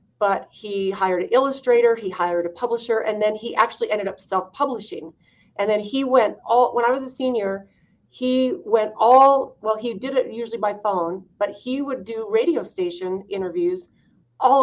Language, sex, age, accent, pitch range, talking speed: English, female, 40-59, American, 200-255 Hz, 185 wpm